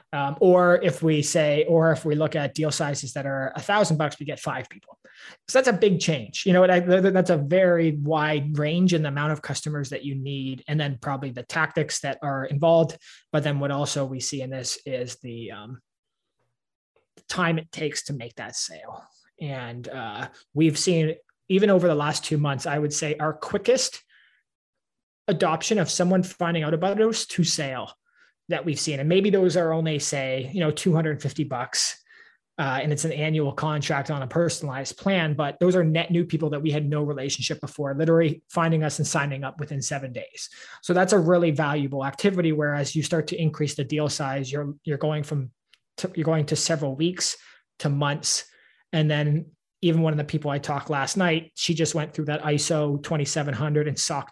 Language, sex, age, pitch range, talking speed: English, male, 20-39, 145-170 Hz, 200 wpm